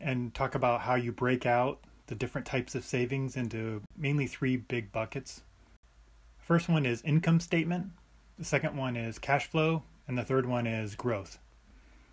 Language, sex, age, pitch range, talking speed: English, male, 30-49, 110-135 Hz, 170 wpm